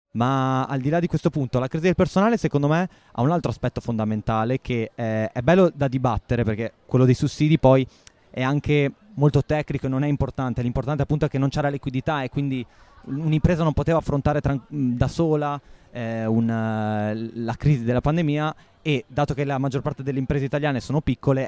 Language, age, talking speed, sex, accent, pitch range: Italian, 20-39, 190 wpm, male, native, 115-145 Hz